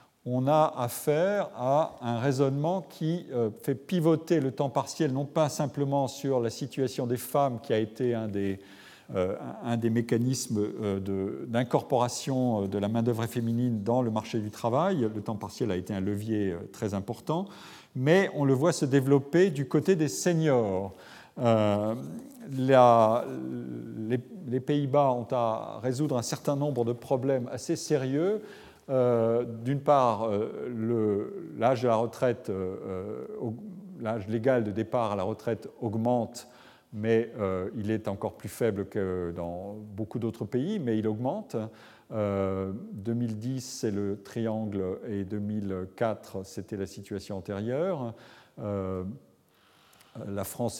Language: French